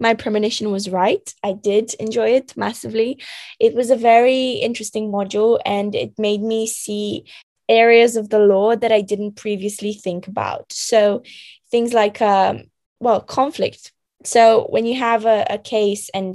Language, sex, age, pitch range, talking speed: English, female, 10-29, 190-220 Hz, 160 wpm